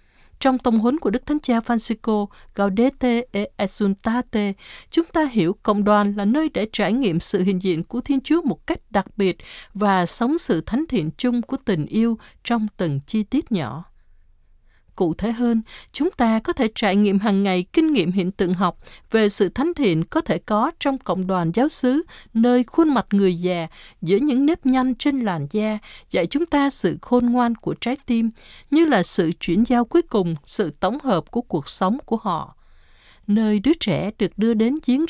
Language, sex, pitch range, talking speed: Vietnamese, female, 190-265 Hz, 200 wpm